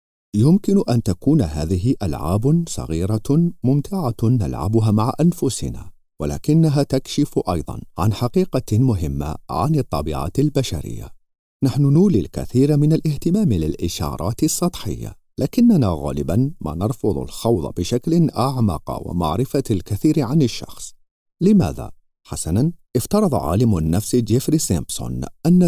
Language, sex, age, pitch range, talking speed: Arabic, male, 50-69, 90-150 Hz, 105 wpm